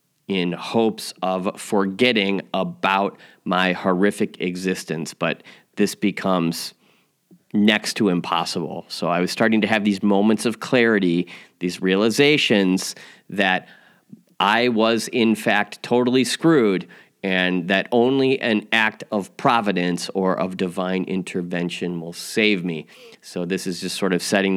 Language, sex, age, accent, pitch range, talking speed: English, male, 30-49, American, 95-115 Hz, 130 wpm